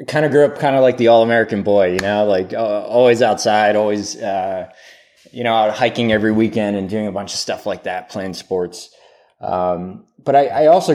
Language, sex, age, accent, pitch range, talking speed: English, male, 20-39, American, 95-115 Hz, 215 wpm